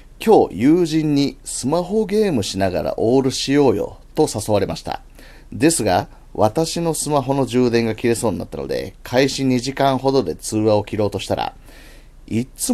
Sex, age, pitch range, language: male, 30-49, 105-140 Hz, Japanese